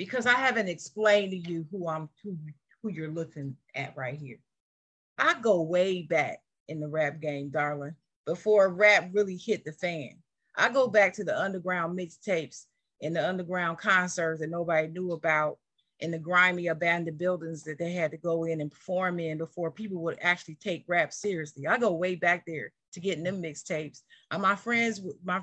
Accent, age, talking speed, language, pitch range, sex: American, 40-59, 185 wpm, English, 165-215 Hz, female